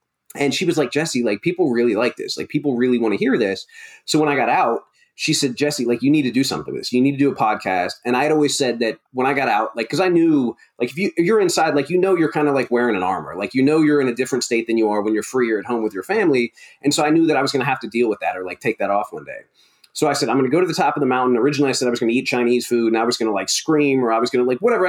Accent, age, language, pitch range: American, 30-49, English, 120-150 Hz